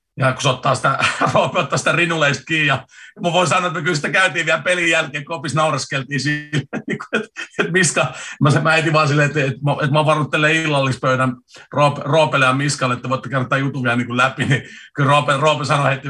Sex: male